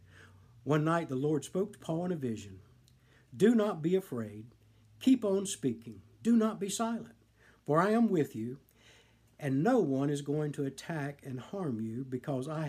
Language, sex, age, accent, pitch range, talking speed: English, male, 60-79, American, 115-160 Hz, 180 wpm